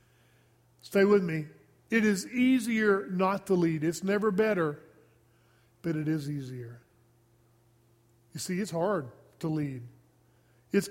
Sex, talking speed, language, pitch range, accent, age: male, 125 wpm, English, 145-190 Hz, American, 40-59